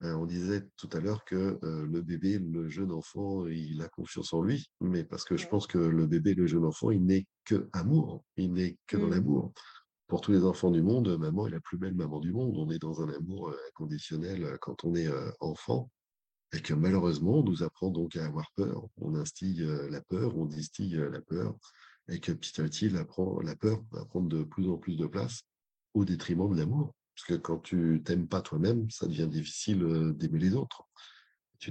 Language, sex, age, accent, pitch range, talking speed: French, male, 50-69, French, 80-95 Hz, 210 wpm